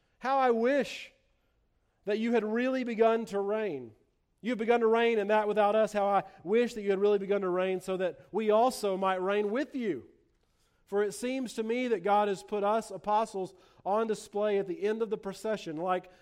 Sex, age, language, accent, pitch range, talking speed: male, 40-59, English, American, 175-215 Hz, 205 wpm